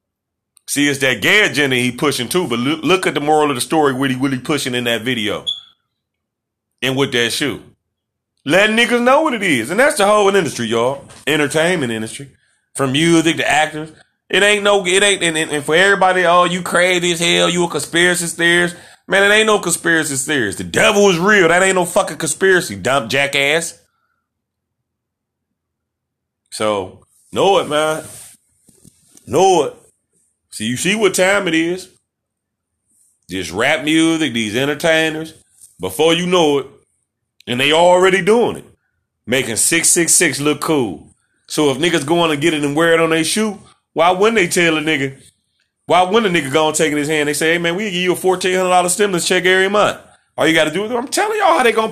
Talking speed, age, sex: 190 wpm, 30-49, male